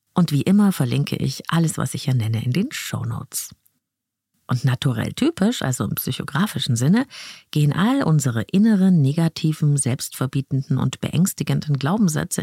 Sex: female